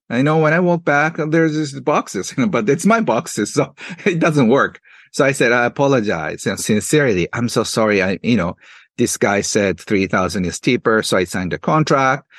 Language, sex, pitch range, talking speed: English, male, 130-180 Hz, 195 wpm